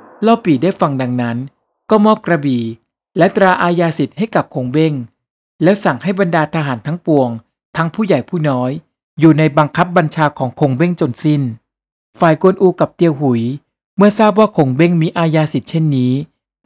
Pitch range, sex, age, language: 135-185 Hz, male, 60-79, Thai